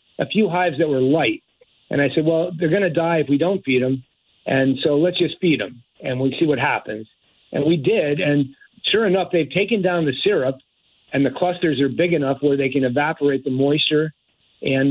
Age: 50-69